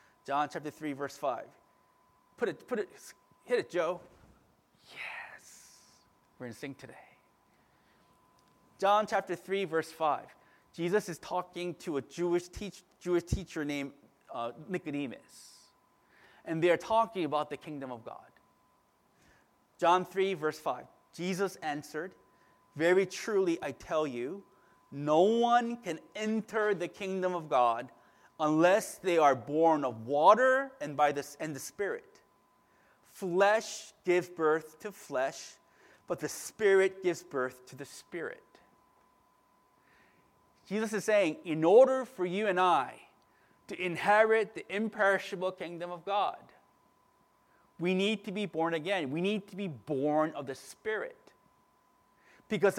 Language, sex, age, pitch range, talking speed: English, male, 30-49, 155-205 Hz, 130 wpm